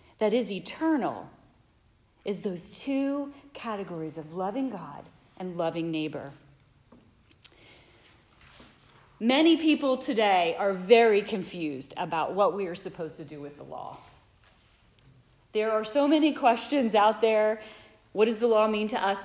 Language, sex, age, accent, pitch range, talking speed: English, female, 40-59, American, 185-270 Hz, 135 wpm